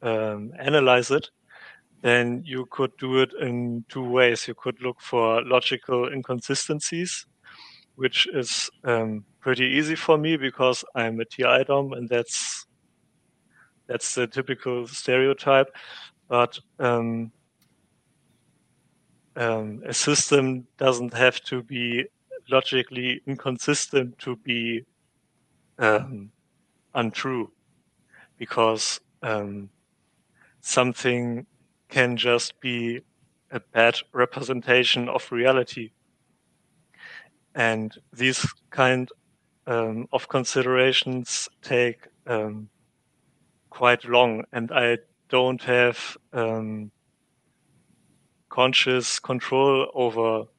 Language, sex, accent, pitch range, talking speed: English, male, German, 115-130 Hz, 95 wpm